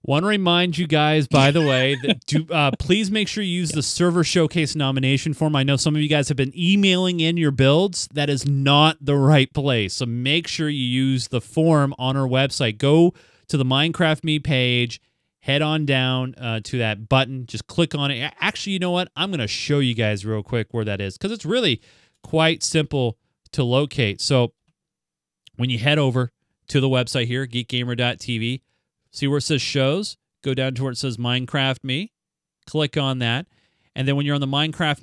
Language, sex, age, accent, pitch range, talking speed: English, male, 30-49, American, 125-160 Hz, 205 wpm